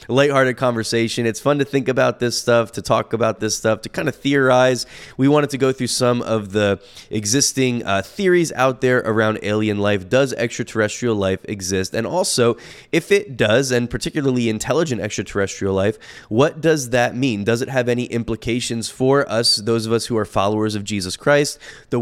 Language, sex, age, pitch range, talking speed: English, male, 20-39, 105-125 Hz, 190 wpm